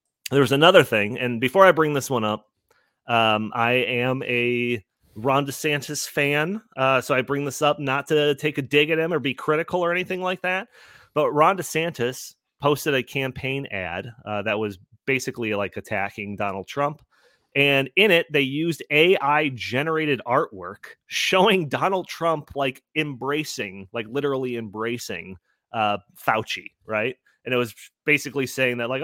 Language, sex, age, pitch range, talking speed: English, male, 30-49, 115-150 Hz, 160 wpm